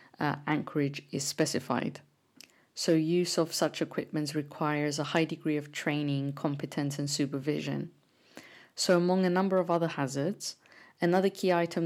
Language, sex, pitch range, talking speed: English, female, 145-160 Hz, 140 wpm